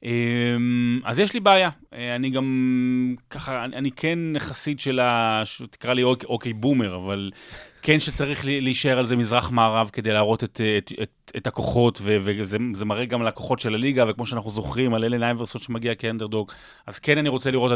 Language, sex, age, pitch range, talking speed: Hebrew, male, 30-49, 110-145 Hz, 175 wpm